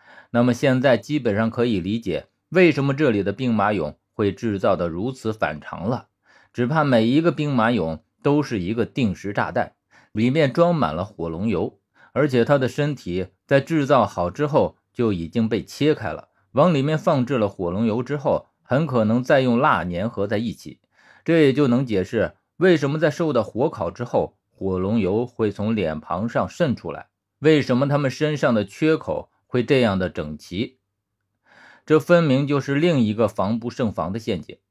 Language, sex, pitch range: Chinese, male, 100-140 Hz